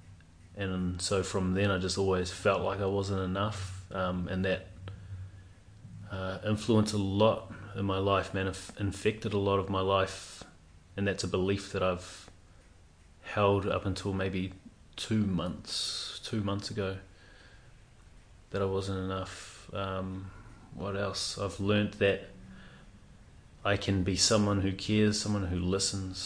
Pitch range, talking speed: 95-100 Hz, 145 wpm